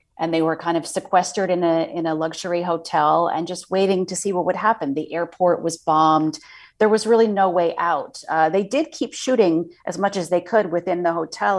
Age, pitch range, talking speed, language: 30-49, 160-200 Hz, 225 wpm, English